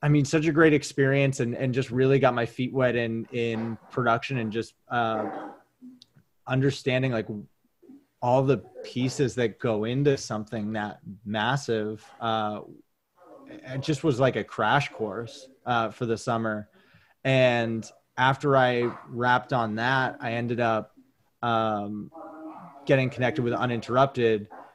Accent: American